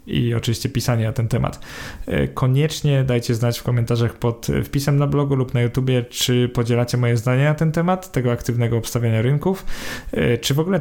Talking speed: 180 wpm